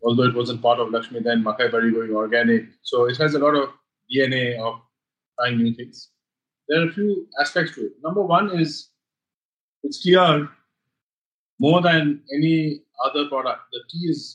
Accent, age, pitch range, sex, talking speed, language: Indian, 30-49, 140-165 Hz, male, 175 wpm, English